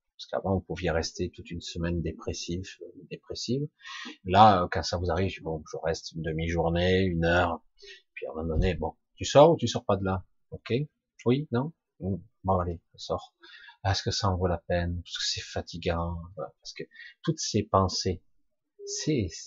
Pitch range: 95-125 Hz